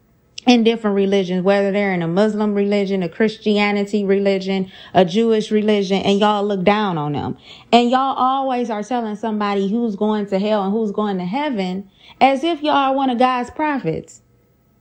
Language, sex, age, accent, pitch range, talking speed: English, female, 20-39, American, 210-275 Hz, 180 wpm